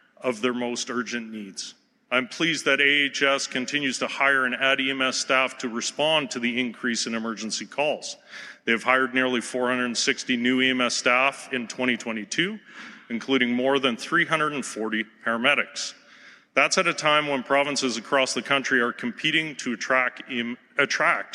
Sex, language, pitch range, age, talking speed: male, English, 120-145 Hz, 40-59, 145 wpm